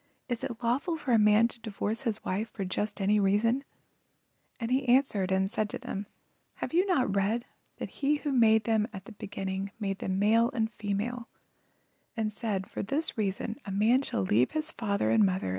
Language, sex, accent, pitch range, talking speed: English, female, American, 200-250 Hz, 195 wpm